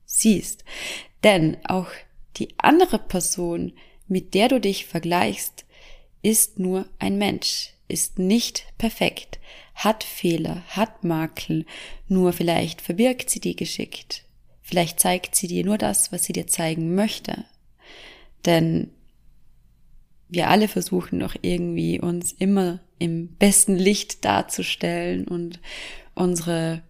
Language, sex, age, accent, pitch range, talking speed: German, female, 20-39, German, 170-200 Hz, 120 wpm